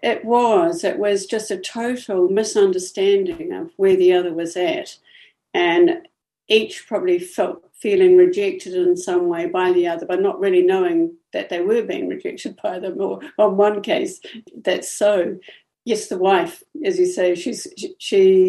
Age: 60-79